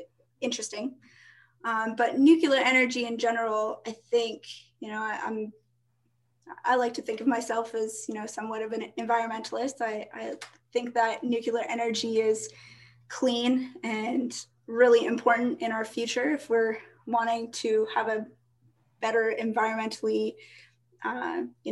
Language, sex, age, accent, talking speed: English, female, 20-39, American, 135 wpm